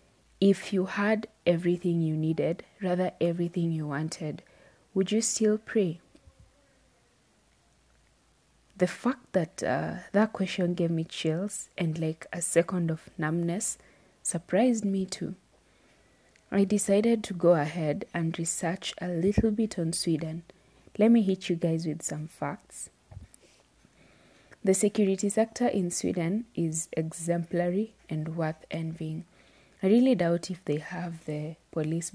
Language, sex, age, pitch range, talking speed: English, female, 20-39, 160-190 Hz, 130 wpm